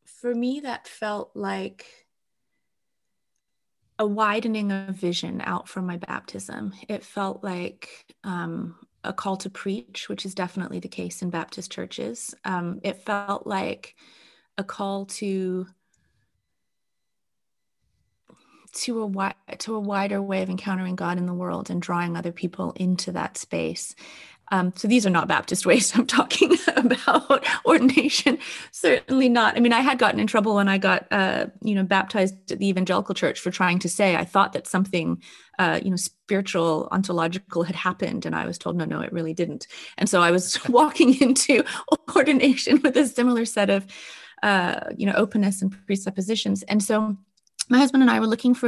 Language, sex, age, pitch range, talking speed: English, female, 30-49, 180-235 Hz, 165 wpm